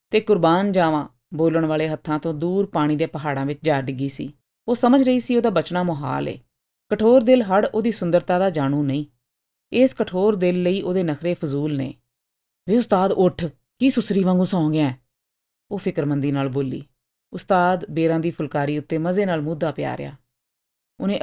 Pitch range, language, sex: 150-195 Hz, Punjabi, female